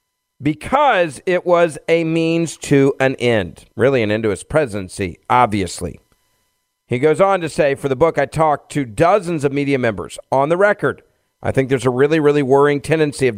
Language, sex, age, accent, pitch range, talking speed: English, male, 40-59, American, 130-175 Hz, 190 wpm